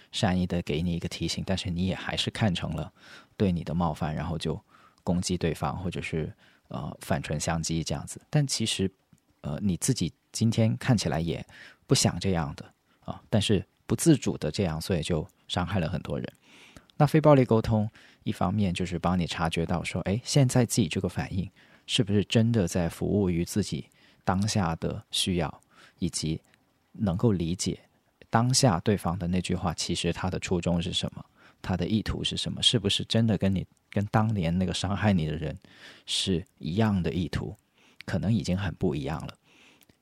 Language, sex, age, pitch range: Chinese, male, 20-39, 85-110 Hz